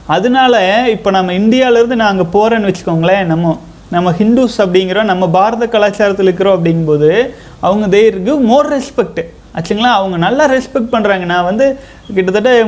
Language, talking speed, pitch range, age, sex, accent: Tamil, 140 wpm, 185-235 Hz, 30-49, male, native